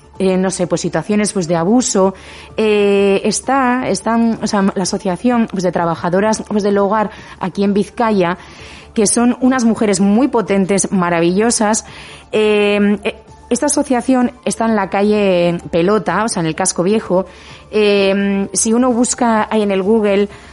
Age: 30-49